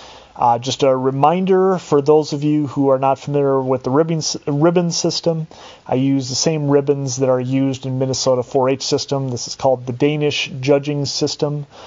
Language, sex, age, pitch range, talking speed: English, male, 30-49, 130-145 Hz, 180 wpm